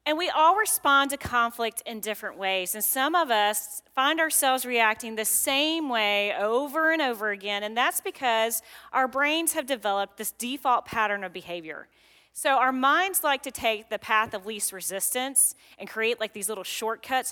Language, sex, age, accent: English, female, 30-49, American